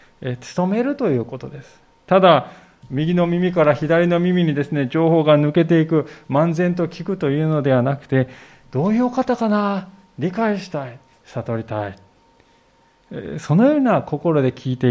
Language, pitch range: Japanese, 130-200 Hz